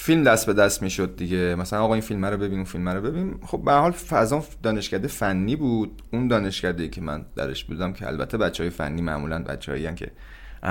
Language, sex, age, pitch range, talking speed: Persian, male, 30-49, 90-135 Hz, 200 wpm